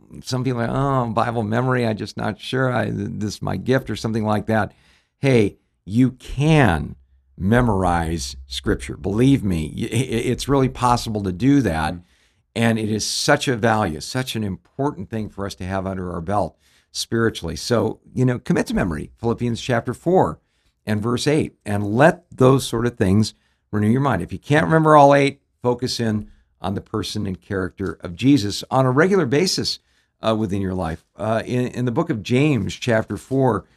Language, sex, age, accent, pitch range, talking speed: English, male, 60-79, American, 95-125 Hz, 185 wpm